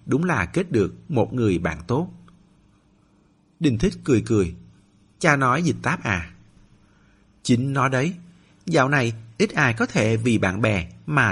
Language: Vietnamese